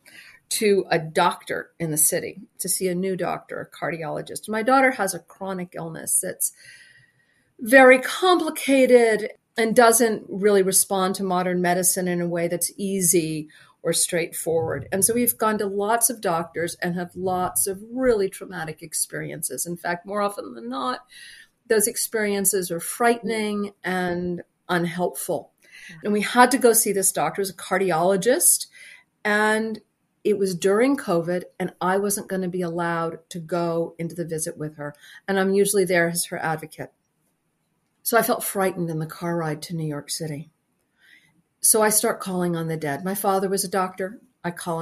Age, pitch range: 50-69, 175-220 Hz